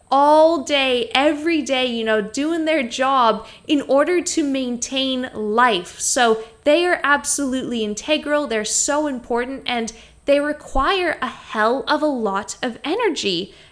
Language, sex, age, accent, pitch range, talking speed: English, female, 10-29, American, 220-300 Hz, 140 wpm